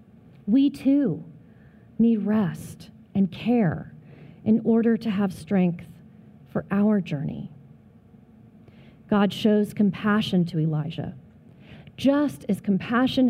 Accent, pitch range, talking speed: American, 165-220 Hz, 100 wpm